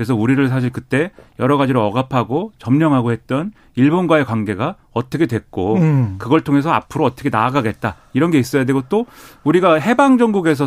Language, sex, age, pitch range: Korean, male, 40-59, 120-155 Hz